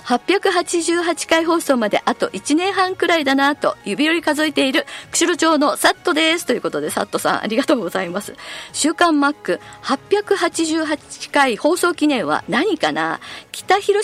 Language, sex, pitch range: Japanese, female, 235-340 Hz